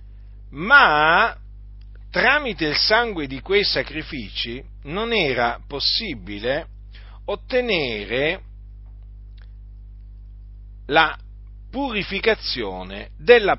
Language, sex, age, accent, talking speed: Italian, male, 40-59, native, 60 wpm